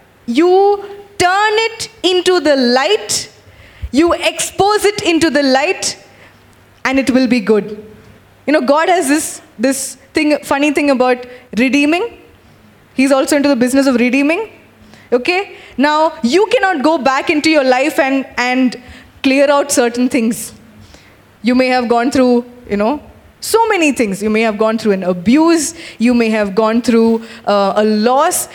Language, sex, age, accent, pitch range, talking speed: English, female, 20-39, Indian, 225-305 Hz, 160 wpm